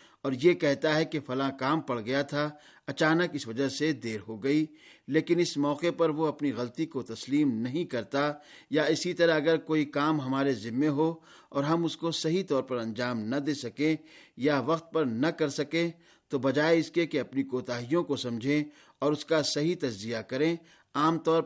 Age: 50-69